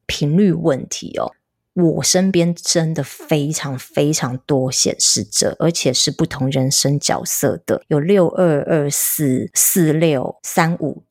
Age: 30-49